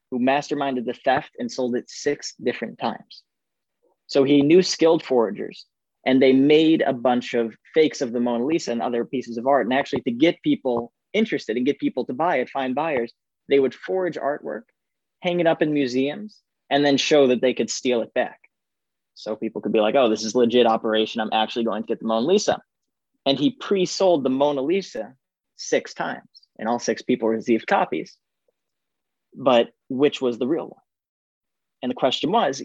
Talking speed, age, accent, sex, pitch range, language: 190 wpm, 20-39, American, male, 115-140 Hz, English